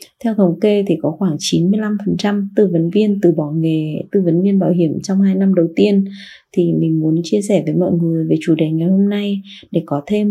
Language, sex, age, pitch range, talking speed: Vietnamese, female, 20-39, 170-205 Hz, 235 wpm